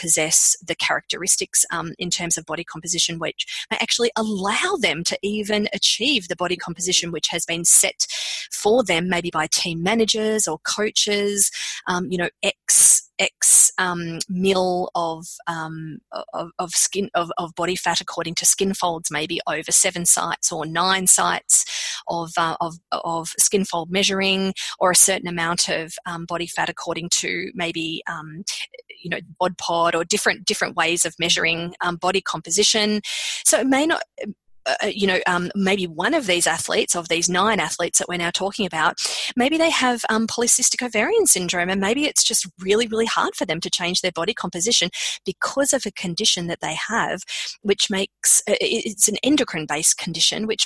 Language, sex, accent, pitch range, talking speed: English, female, Australian, 170-215 Hz, 180 wpm